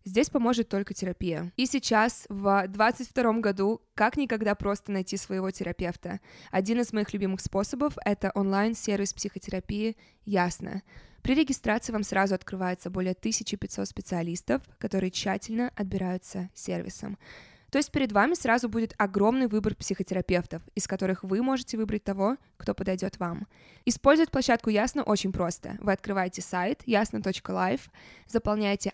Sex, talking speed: female, 135 wpm